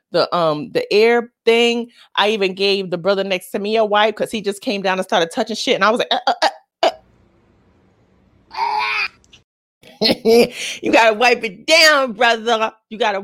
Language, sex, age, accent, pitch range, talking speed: English, female, 30-49, American, 165-235 Hz, 180 wpm